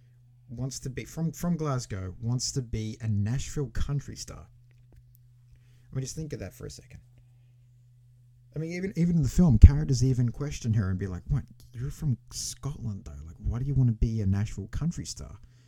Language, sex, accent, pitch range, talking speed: English, male, Australian, 105-125 Hz, 200 wpm